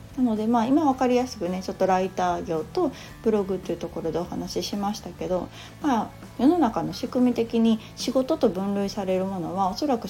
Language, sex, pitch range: Japanese, female, 180-240 Hz